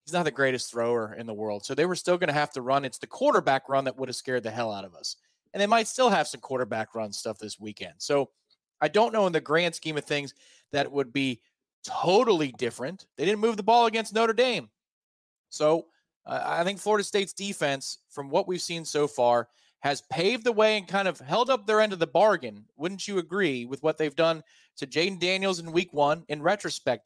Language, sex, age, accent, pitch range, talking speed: English, male, 30-49, American, 135-180 Hz, 235 wpm